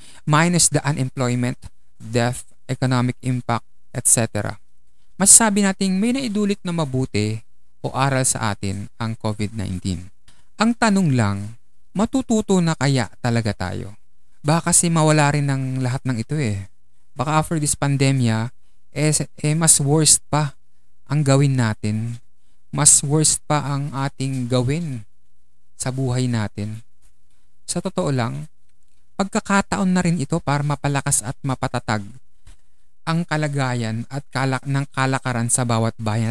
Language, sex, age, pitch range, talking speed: Filipino, male, 20-39, 105-150 Hz, 130 wpm